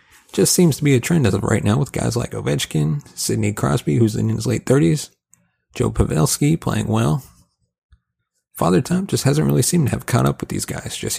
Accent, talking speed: American, 210 wpm